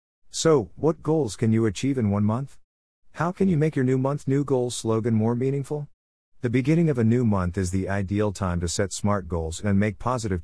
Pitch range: 85-125 Hz